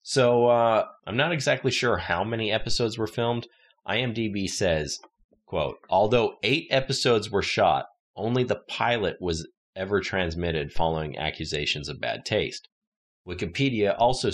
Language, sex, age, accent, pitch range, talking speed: English, male, 30-49, American, 85-120 Hz, 135 wpm